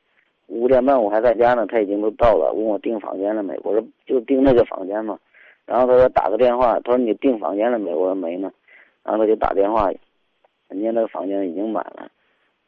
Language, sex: Chinese, male